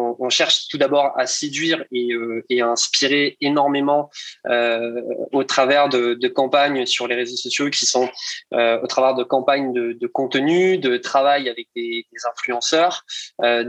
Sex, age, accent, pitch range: male, 20-39, French, 120-145 Hz